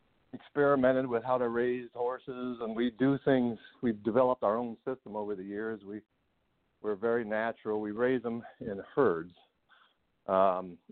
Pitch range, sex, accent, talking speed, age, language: 100-120 Hz, male, American, 155 wpm, 60-79, English